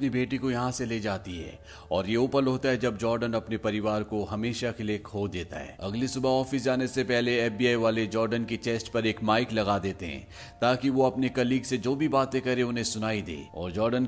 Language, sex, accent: Hindi, male, native